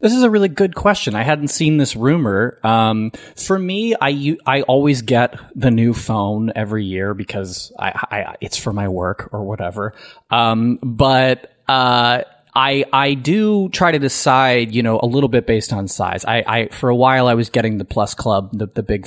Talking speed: 200 wpm